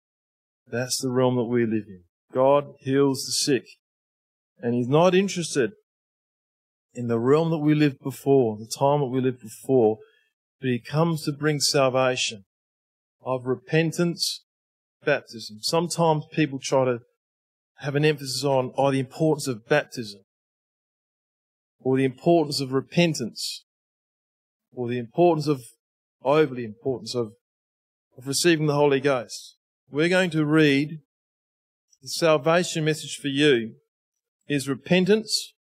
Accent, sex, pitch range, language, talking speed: Australian, male, 130-170 Hz, English, 130 wpm